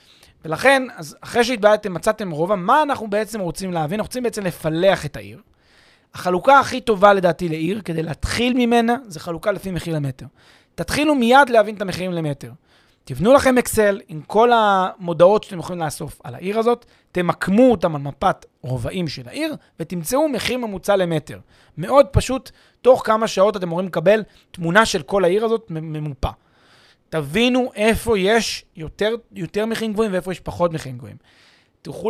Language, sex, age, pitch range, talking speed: Hebrew, male, 30-49, 165-225 Hz, 160 wpm